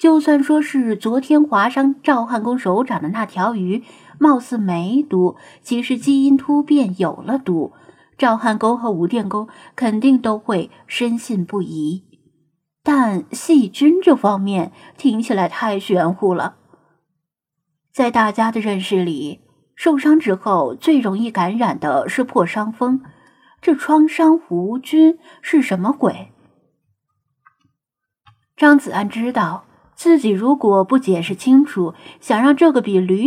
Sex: female